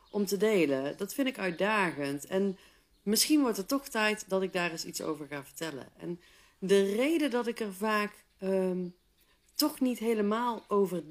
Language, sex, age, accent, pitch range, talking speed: Dutch, female, 40-59, Dutch, 180-225 Hz, 180 wpm